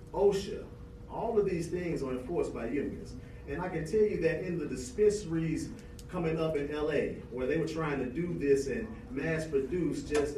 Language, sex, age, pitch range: English, male, 40-59, 135-170 Hz